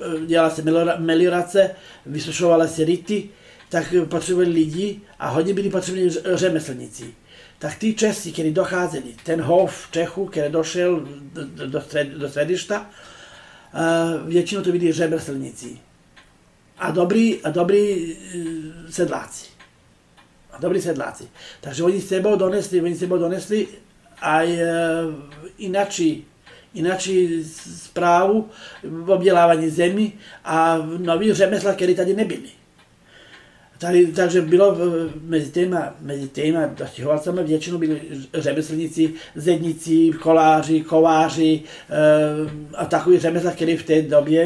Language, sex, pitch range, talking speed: Czech, male, 155-180 Hz, 110 wpm